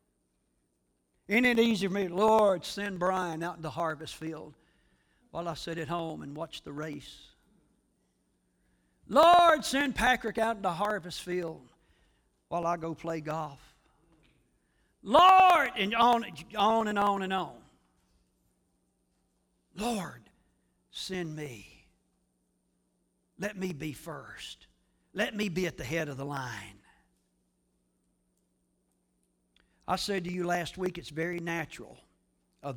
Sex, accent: male, American